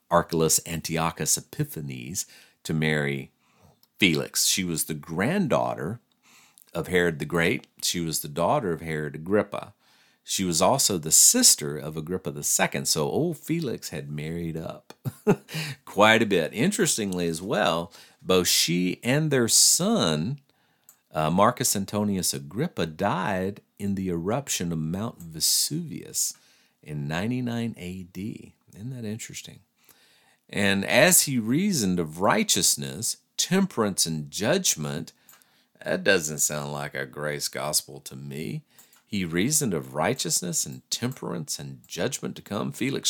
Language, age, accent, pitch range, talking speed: English, 50-69, American, 80-120 Hz, 130 wpm